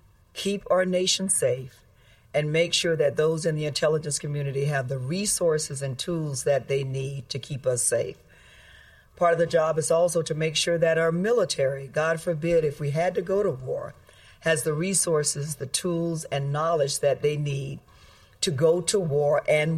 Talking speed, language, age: 185 wpm, English, 50-69